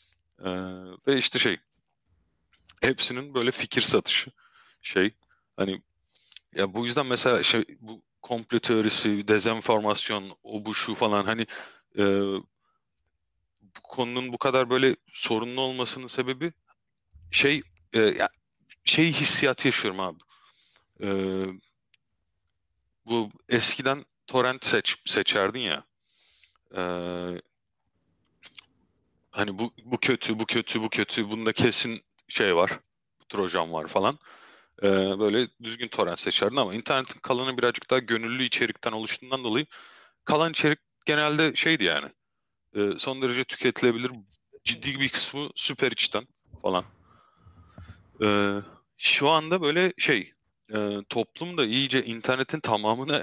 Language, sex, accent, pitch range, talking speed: Turkish, male, native, 95-130 Hz, 115 wpm